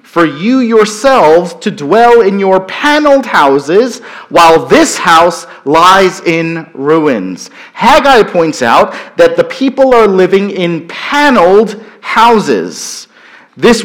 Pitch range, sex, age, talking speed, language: 185-260 Hz, male, 40-59, 115 wpm, English